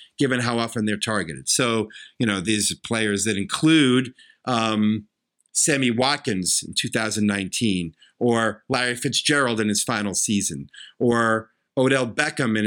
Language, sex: English, male